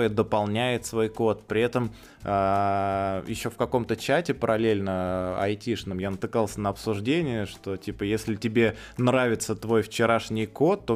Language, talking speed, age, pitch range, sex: Russian, 130 wpm, 20-39, 90-115 Hz, male